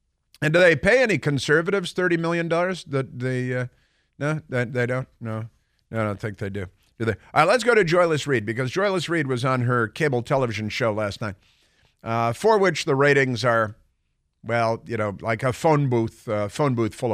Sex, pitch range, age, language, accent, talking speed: male, 115-145 Hz, 50-69, English, American, 210 wpm